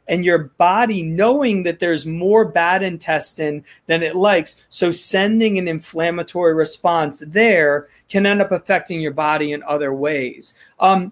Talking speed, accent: 150 wpm, American